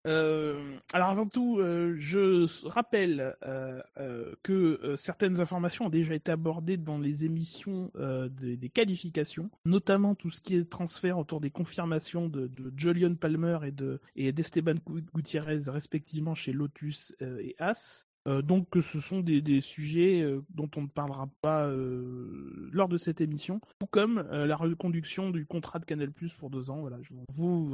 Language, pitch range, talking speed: French, 145-185 Hz, 175 wpm